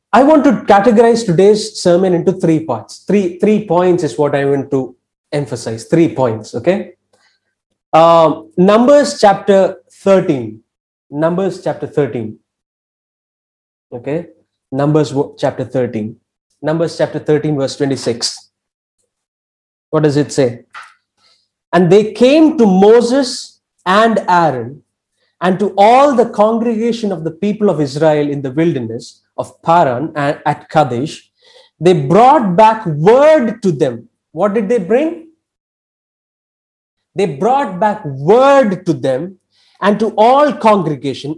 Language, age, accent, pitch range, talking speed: English, 20-39, Indian, 145-220 Hz, 125 wpm